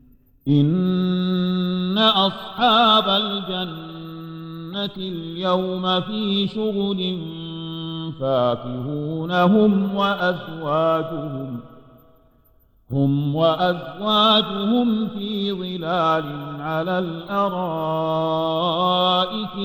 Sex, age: male, 50-69